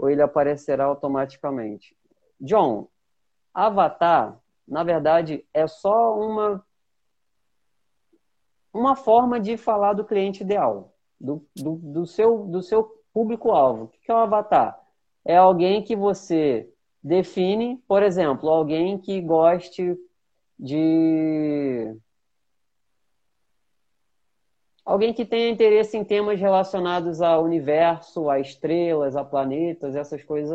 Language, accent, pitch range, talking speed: Portuguese, Brazilian, 155-205 Hz, 110 wpm